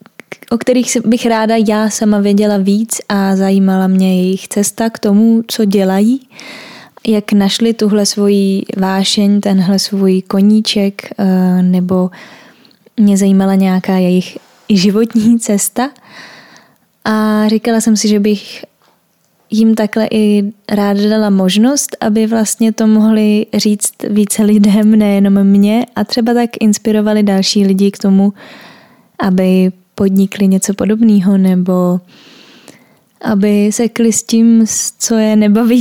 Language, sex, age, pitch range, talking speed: Czech, female, 10-29, 195-225 Hz, 120 wpm